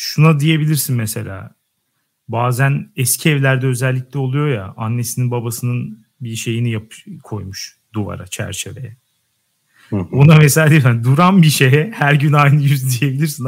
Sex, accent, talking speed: male, native, 125 wpm